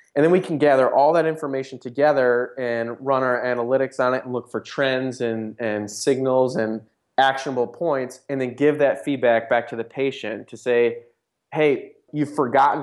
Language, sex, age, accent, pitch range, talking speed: English, male, 20-39, American, 115-135 Hz, 185 wpm